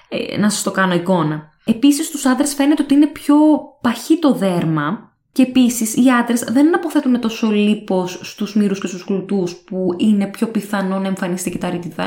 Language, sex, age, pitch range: Greek, female, 20-39, 185-255 Hz